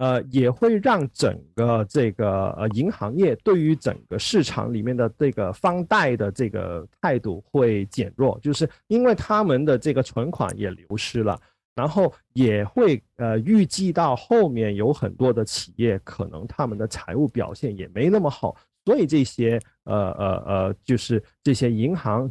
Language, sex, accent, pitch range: Chinese, male, native, 105-150 Hz